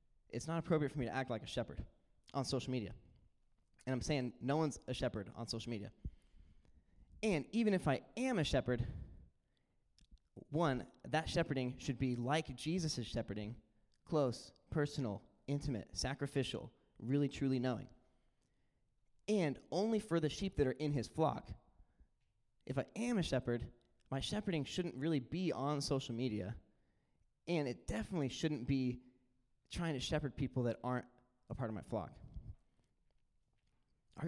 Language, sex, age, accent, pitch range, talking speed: English, male, 20-39, American, 120-175 Hz, 150 wpm